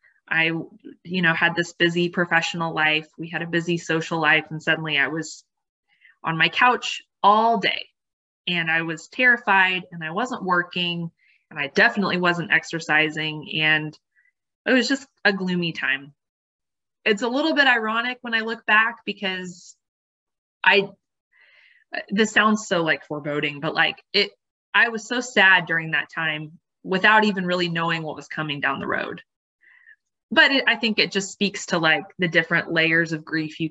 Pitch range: 155-195 Hz